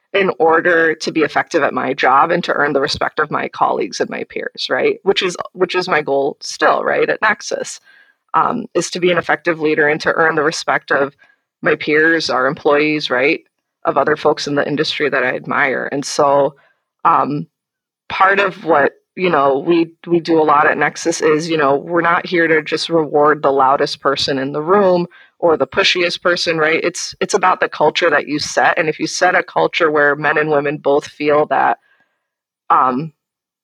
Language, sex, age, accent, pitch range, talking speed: English, female, 20-39, American, 145-175 Hz, 205 wpm